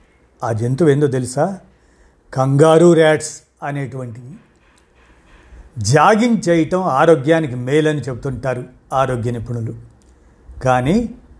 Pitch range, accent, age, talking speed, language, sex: 120-165 Hz, native, 50-69, 85 wpm, Telugu, male